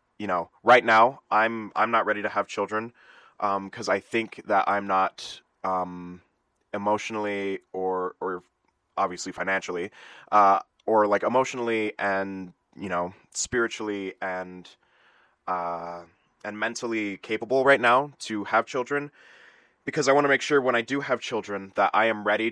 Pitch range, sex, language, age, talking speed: 95-115 Hz, male, English, 20-39, 150 wpm